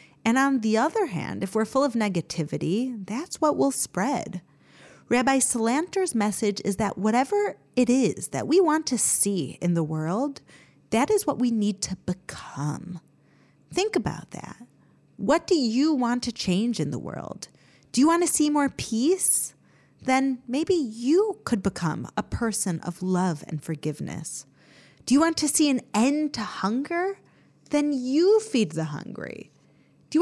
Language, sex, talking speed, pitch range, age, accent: English, female, 165 wpm, 190-295 Hz, 30-49, American